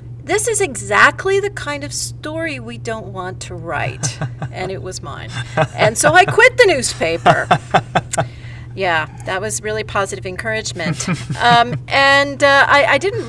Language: English